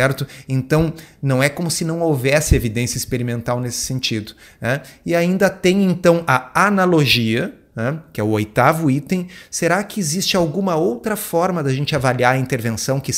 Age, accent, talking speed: 30-49, Brazilian, 165 wpm